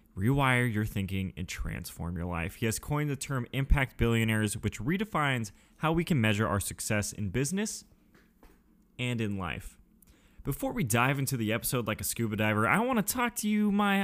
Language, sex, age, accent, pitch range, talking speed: English, male, 20-39, American, 105-160 Hz, 190 wpm